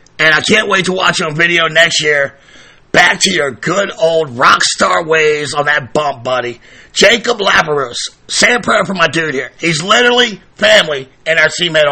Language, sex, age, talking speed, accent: English, male, 50-69, 190 wpm, American